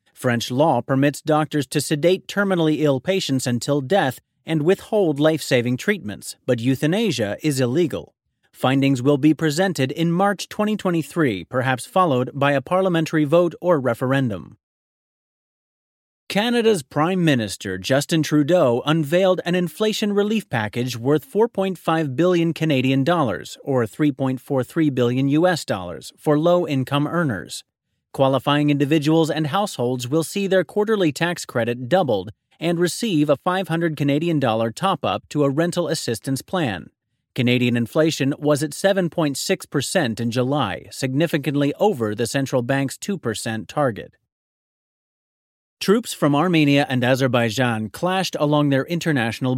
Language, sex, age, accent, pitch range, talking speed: English, male, 30-49, American, 130-170 Hz, 125 wpm